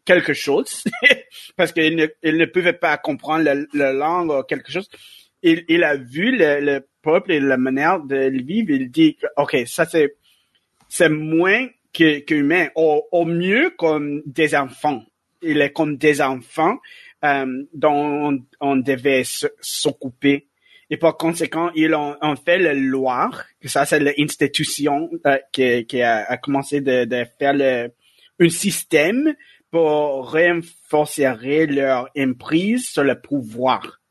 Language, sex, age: French, male, 30-49